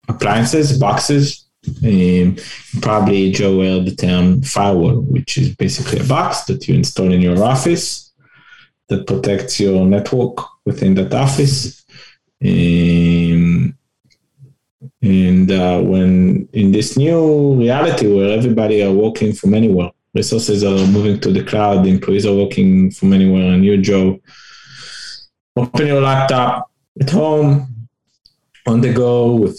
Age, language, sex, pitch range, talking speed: 20-39, English, male, 95-130 Hz, 130 wpm